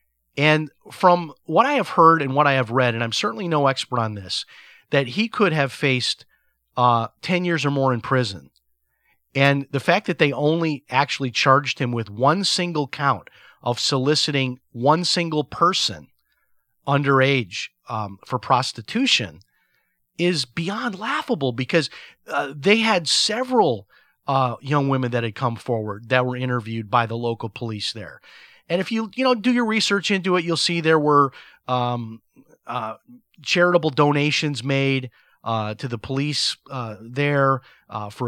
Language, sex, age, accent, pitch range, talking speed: English, male, 40-59, American, 120-160 Hz, 160 wpm